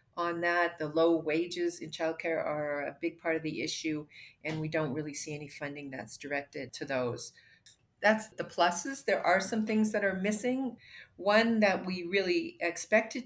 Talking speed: 180 wpm